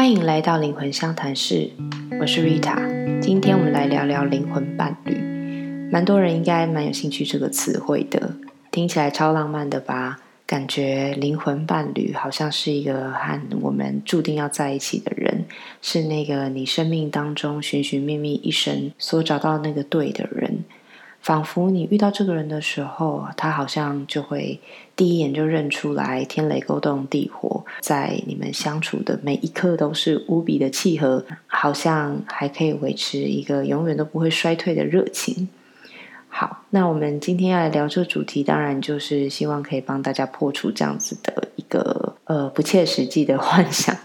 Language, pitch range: Chinese, 140-175 Hz